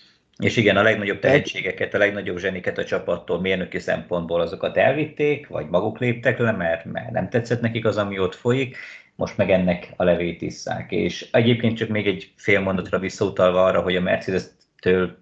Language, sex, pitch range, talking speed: Hungarian, male, 90-115 Hz, 180 wpm